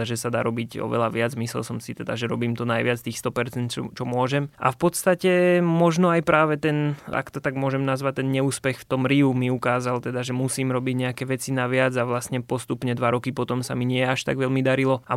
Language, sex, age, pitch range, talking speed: Slovak, male, 20-39, 120-130 Hz, 235 wpm